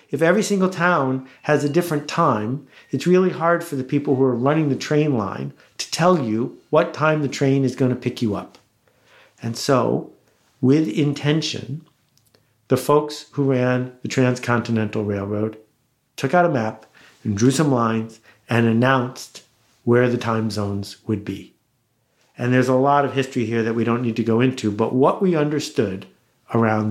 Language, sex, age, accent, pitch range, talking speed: English, male, 50-69, American, 120-155 Hz, 175 wpm